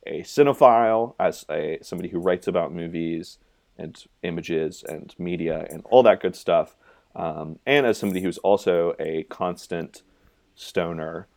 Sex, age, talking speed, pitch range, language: male, 30-49, 140 wpm, 85-105 Hz, English